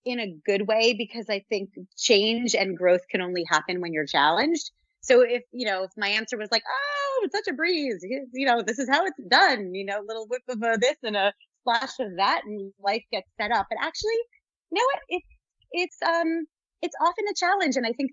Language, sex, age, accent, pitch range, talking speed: English, female, 30-49, American, 200-270 Hz, 230 wpm